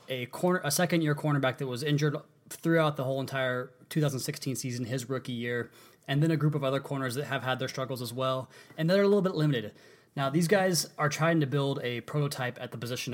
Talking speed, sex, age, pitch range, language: 225 wpm, male, 20-39, 120-145 Hz, English